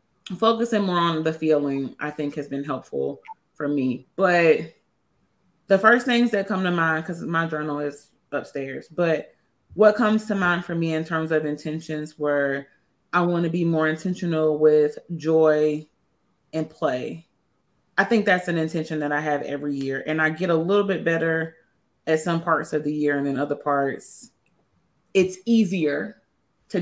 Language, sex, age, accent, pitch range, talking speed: English, female, 30-49, American, 145-170 Hz, 170 wpm